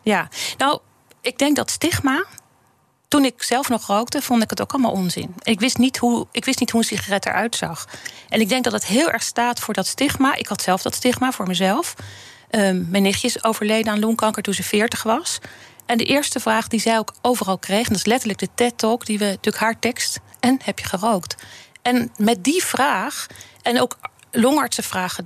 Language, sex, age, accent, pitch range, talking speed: Dutch, female, 40-59, Dutch, 200-250 Hz, 210 wpm